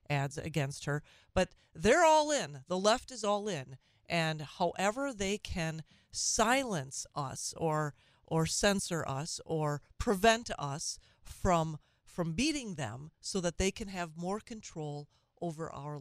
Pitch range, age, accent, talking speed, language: 145-190 Hz, 40-59, American, 140 wpm, English